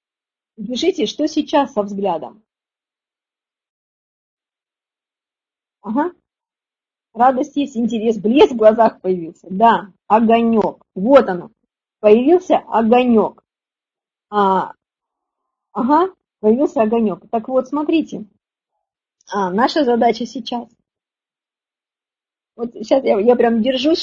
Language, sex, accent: Russian, female, native